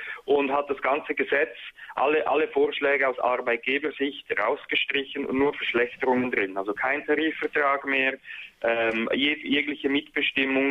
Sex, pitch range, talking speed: male, 120-140 Hz, 125 wpm